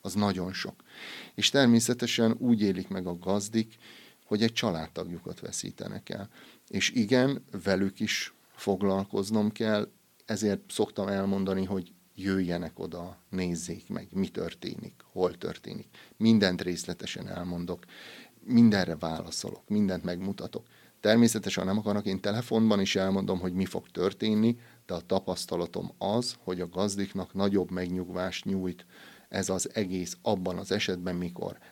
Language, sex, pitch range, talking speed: Hungarian, male, 90-110 Hz, 130 wpm